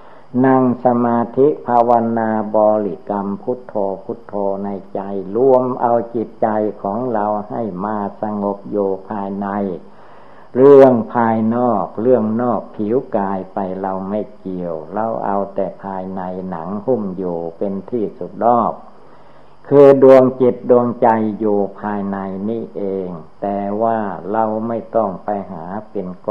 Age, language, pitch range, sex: 60-79, Thai, 95-120 Hz, male